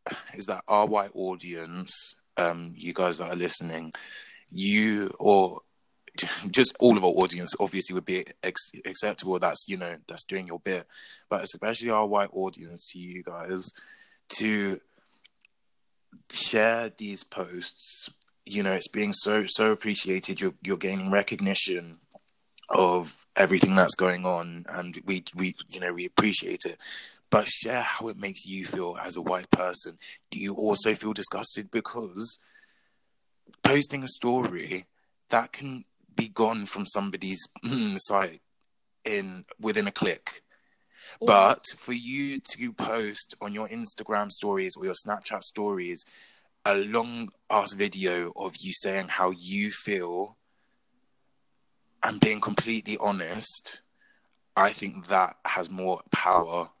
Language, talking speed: English, 140 wpm